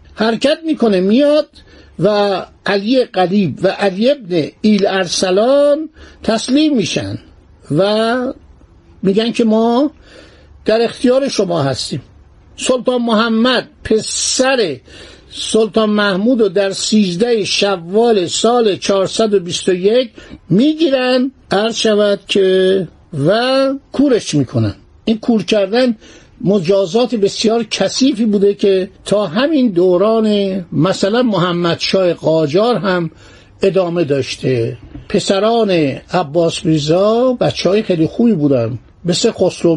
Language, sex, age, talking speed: Persian, male, 60-79, 100 wpm